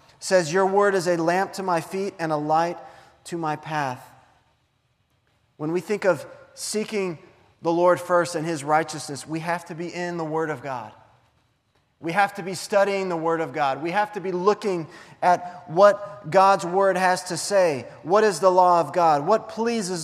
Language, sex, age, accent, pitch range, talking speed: English, male, 30-49, American, 120-180 Hz, 190 wpm